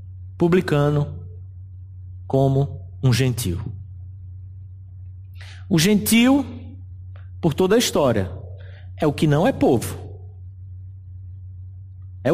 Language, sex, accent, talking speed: Portuguese, male, Brazilian, 85 wpm